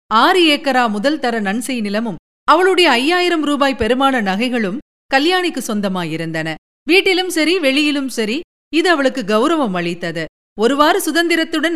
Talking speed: 115 wpm